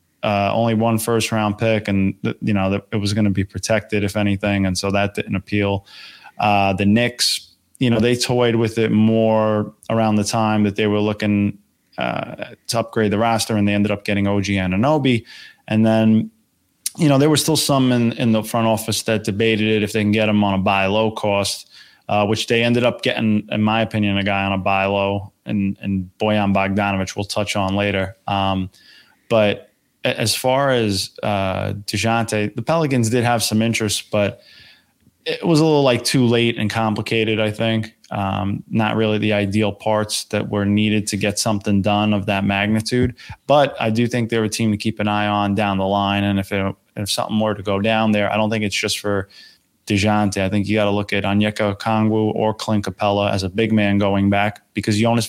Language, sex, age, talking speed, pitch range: English, male, 20-39, 210 wpm, 100-115 Hz